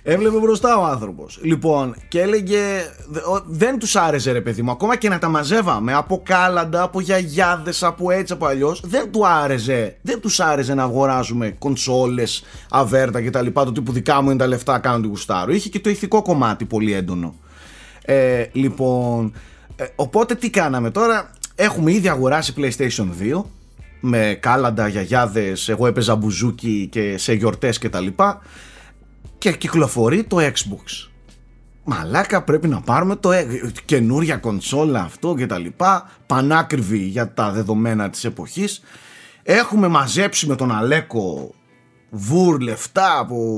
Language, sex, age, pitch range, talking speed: Greek, male, 30-49, 120-180 Hz, 140 wpm